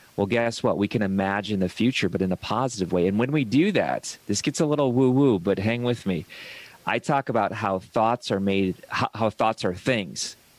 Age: 40-59